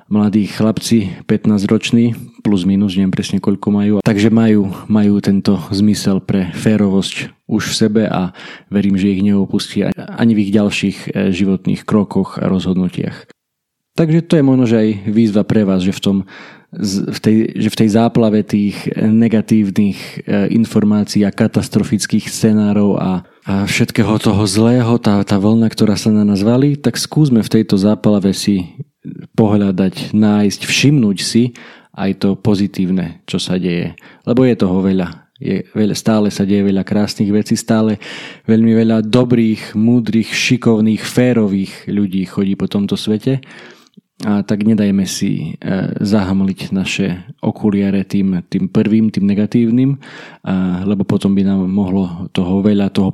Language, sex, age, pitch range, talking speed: Slovak, male, 20-39, 95-110 Hz, 145 wpm